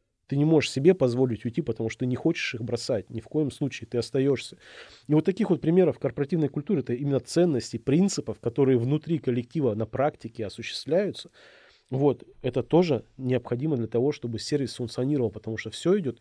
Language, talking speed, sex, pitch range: Russian, 180 wpm, male, 115-150 Hz